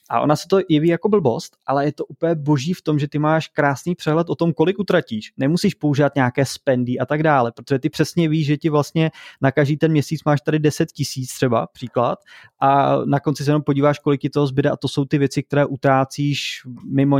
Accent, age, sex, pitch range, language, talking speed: native, 20-39, male, 130-150 Hz, Czech, 225 wpm